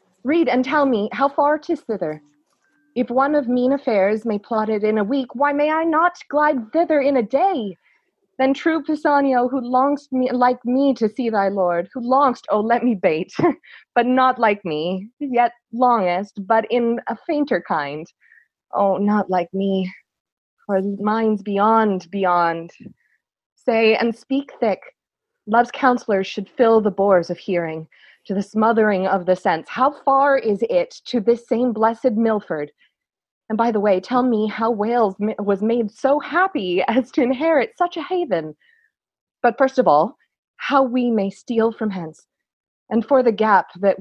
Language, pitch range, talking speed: English, 200-270 Hz, 170 wpm